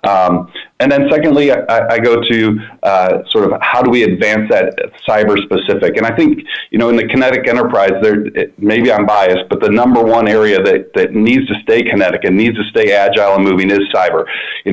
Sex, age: male, 40-59